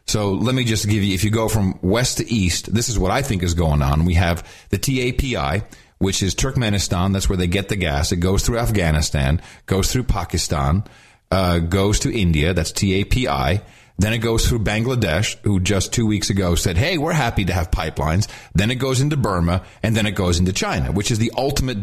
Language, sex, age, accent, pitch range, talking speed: English, male, 40-59, American, 95-125 Hz, 215 wpm